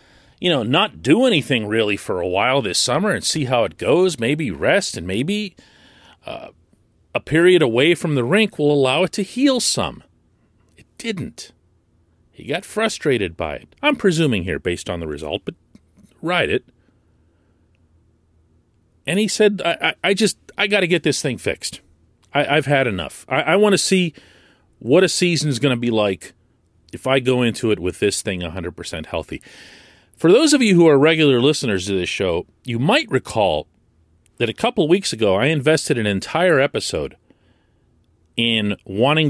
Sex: male